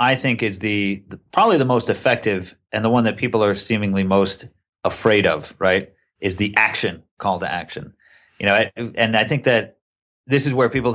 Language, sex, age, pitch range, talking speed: English, male, 30-49, 95-115 Hz, 195 wpm